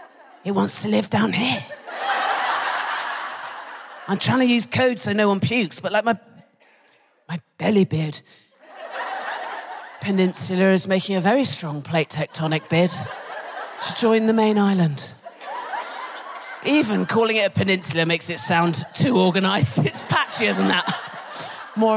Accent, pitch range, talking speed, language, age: British, 190-270 Hz, 135 wpm, English, 30-49